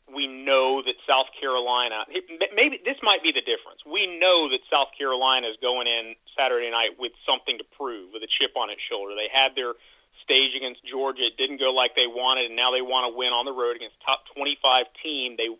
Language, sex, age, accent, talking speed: English, male, 40-59, American, 220 wpm